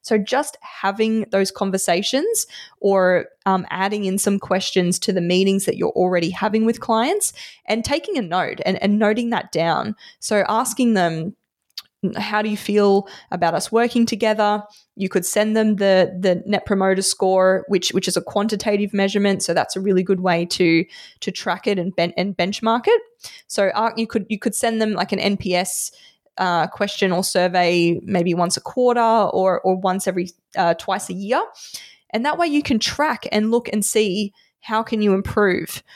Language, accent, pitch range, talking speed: English, Australian, 185-225 Hz, 185 wpm